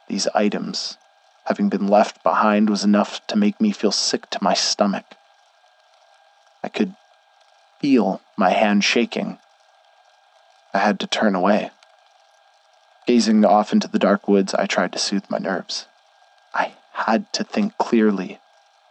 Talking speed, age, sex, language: 140 wpm, 20-39, male, English